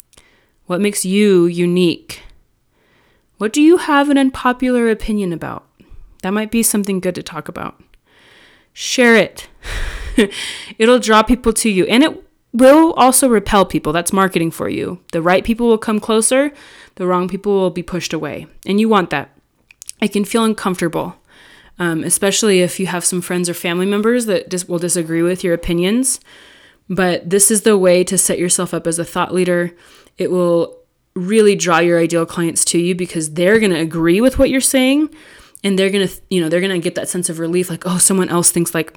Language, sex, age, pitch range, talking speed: English, female, 20-39, 175-215 Hz, 190 wpm